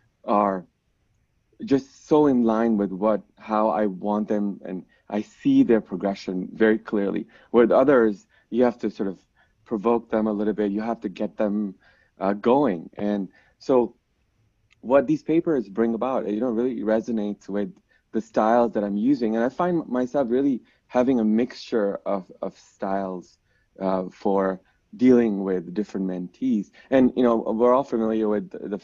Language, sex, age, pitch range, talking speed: English, male, 20-39, 100-120 Hz, 165 wpm